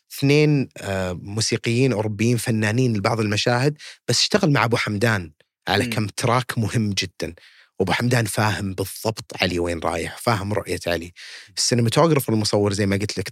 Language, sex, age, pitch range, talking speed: English, male, 30-49, 100-135 Hz, 150 wpm